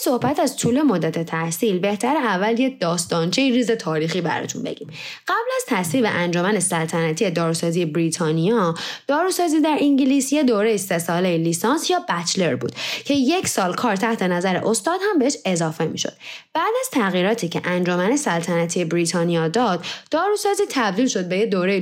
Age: 10-29